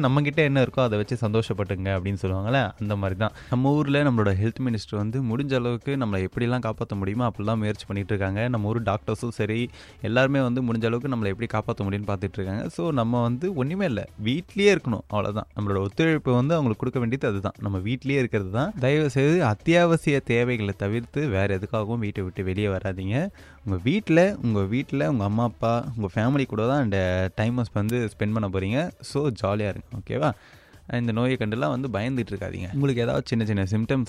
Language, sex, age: Tamil, male, 20-39